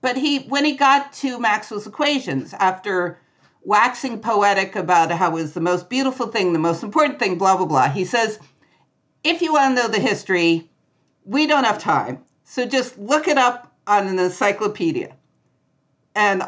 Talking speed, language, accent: 175 wpm, English, American